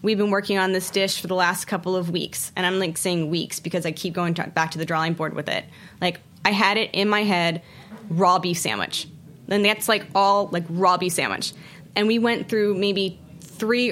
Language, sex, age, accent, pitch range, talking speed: English, female, 20-39, American, 175-205 Hz, 225 wpm